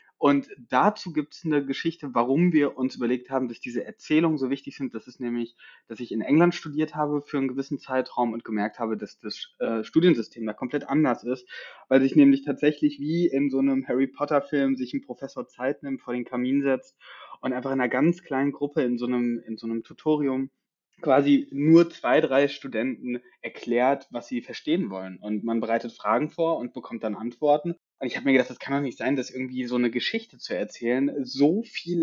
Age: 20-39